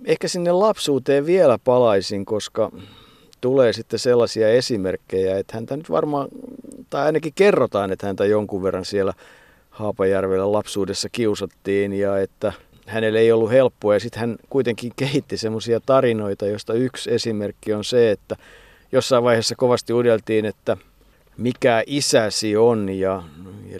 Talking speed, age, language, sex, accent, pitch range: 135 wpm, 50-69, Finnish, male, native, 105-125 Hz